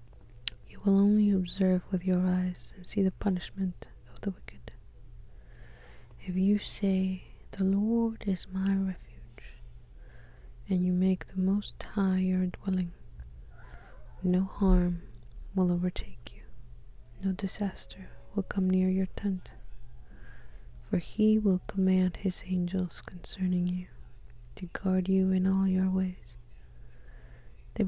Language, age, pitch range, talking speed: English, 20-39, 120-190 Hz, 125 wpm